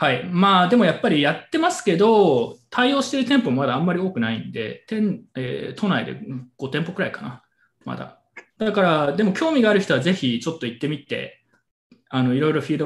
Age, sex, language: 20-39, male, Japanese